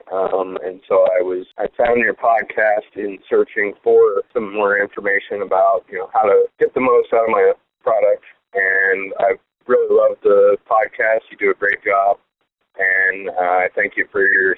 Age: 30-49